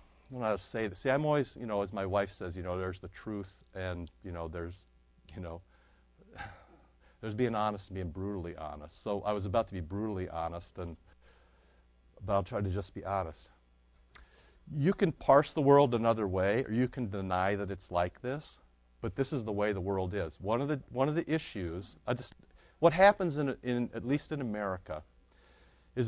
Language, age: English, 50-69